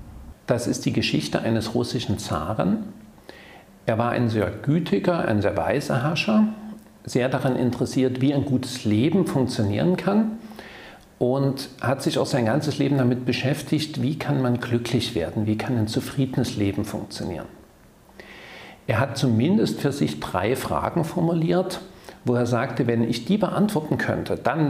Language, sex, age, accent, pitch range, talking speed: German, male, 50-69, German, 110-145 Hz, 150 wpm